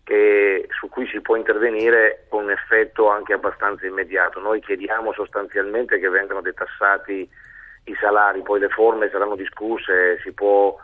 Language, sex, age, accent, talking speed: Italian, male, 40-59, native, 150 wpm